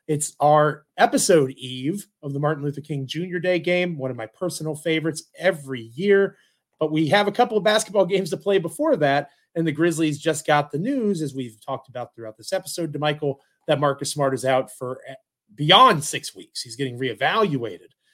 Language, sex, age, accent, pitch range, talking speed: English, male, 30-49, American, 140-190 Hz, 195 wpm